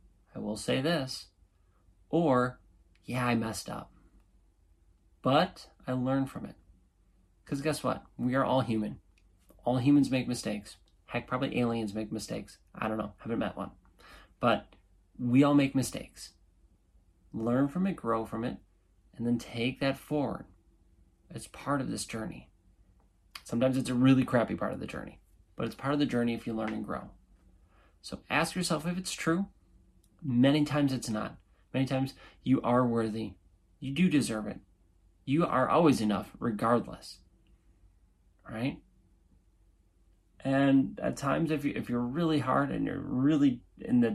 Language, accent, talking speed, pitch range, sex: English, American, 160 wpm, 90-130 Hz, male